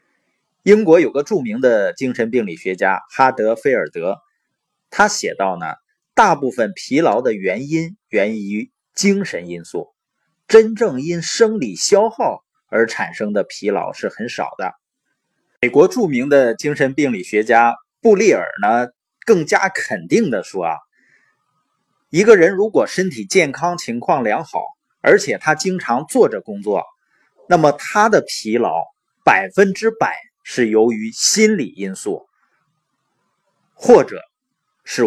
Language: Chinese